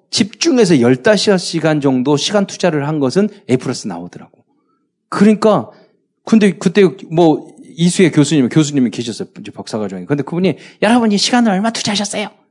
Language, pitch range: Korean, 140-220 Hz